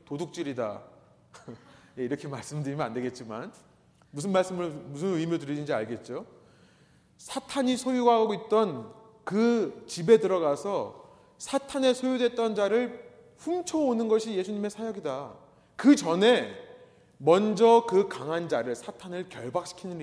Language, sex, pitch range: Korean, male, 155-235 Hz